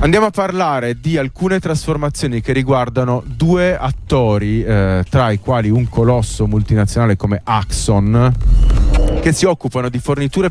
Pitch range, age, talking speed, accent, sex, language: 100-130 Hz, 30-49, 135 wpm, native, male, Italian